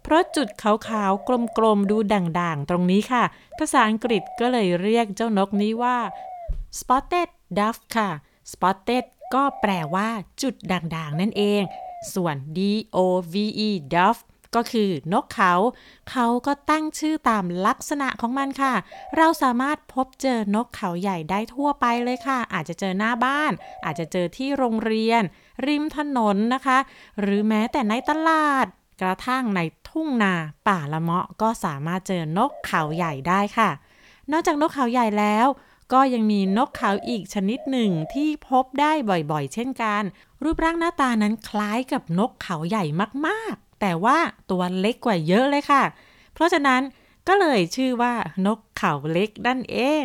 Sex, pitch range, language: female, 190-265 Hz, Thai